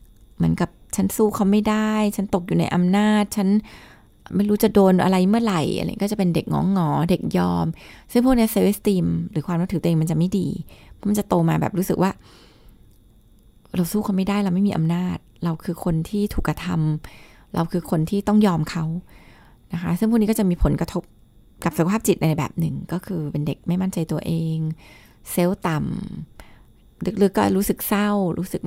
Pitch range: 165-205 Hz